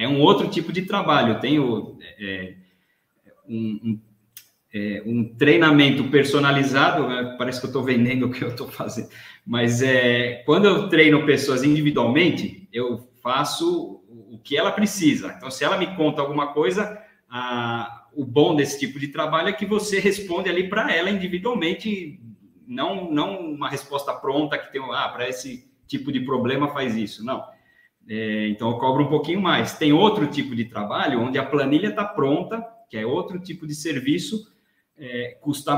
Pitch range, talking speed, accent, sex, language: 120-175 Hz, 165 wpm, Brazilian, male, Portuguese